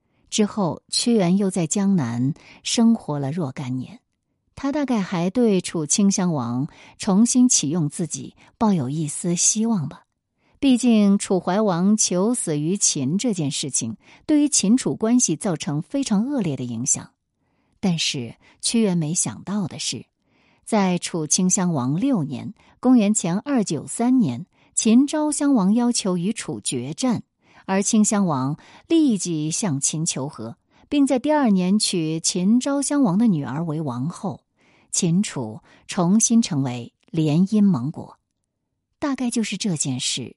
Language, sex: Chinese, female